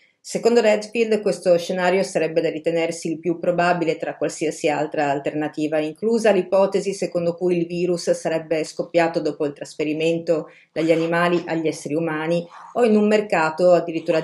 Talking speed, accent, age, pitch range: 150 wpm, native, 40-59, 165-215 Hz